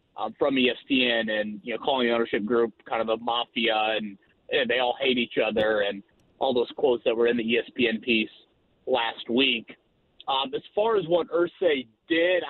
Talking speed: 190 wpm